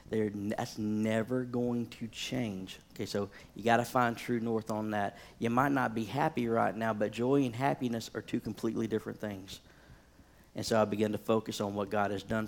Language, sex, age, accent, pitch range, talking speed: English, male, 40-59, American, 100-115 Hz, 200 wpm